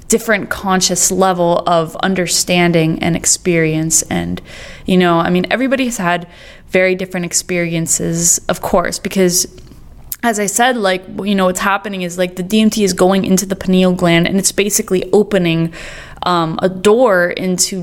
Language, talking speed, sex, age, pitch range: English, 160 wpm, female, 20-39, 175-220 Hz